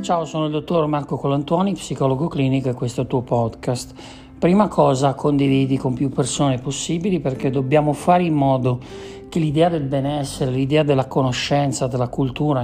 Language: Italian